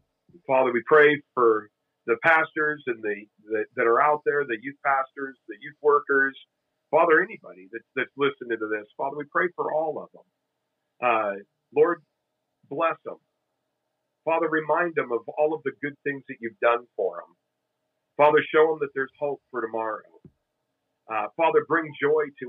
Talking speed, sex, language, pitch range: 170 wpm, male, English, 120-150 Hz